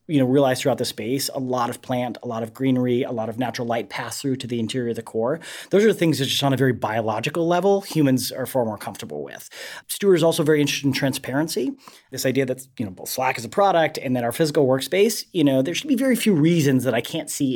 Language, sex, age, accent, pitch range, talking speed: English, male, 30-49, American, 120-155 Hz, 265 wpm